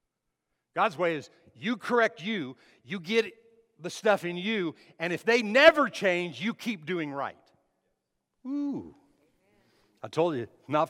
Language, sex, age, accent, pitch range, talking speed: English, male, 50-69, American, 135-195 Hz, 145 wpm